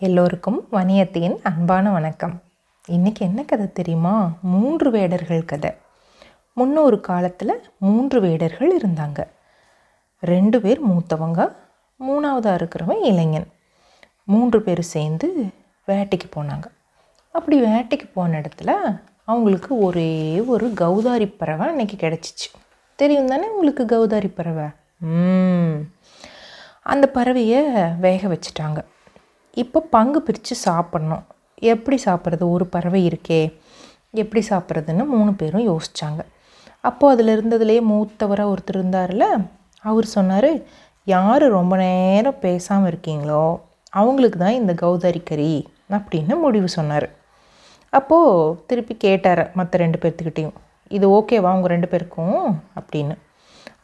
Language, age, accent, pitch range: Tamil, 30-49, native, 170-225 Hz